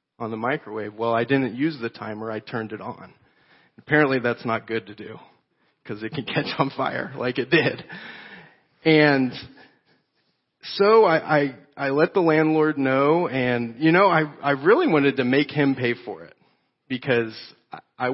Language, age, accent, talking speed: English, 40-59, American, 170 wpm